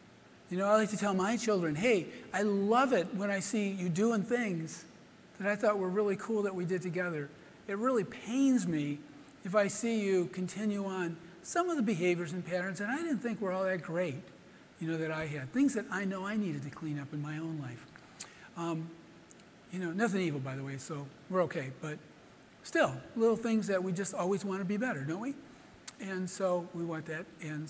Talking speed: 220 wpm